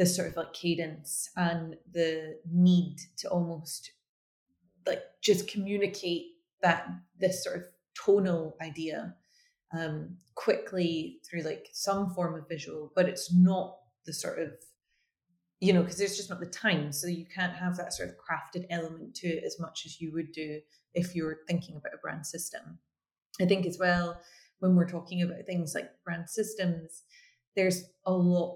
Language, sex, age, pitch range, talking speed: English, female, 30-49, 160-180 Hz, 170 wpm